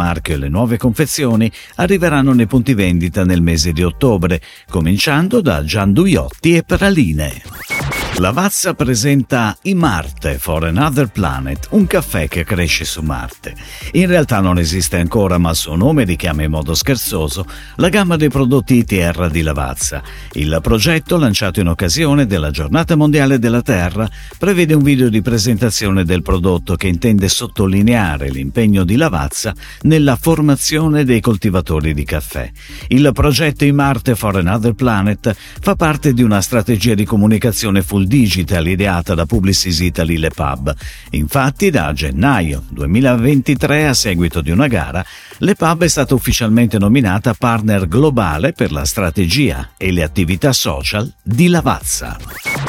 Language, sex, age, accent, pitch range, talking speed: Italian, male, 50-69, native, 85-135 Hz, 145 wpm